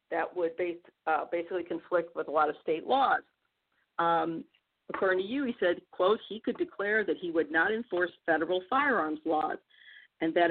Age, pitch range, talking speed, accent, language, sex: 50-69, 180-265 Hz, 175 wpm, American, English, female